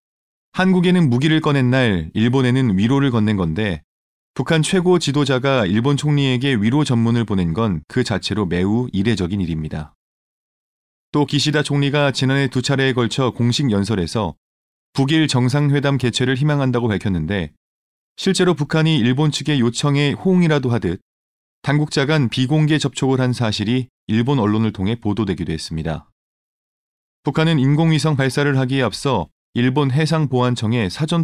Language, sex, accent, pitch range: Korean, male, native, 110-150 Hz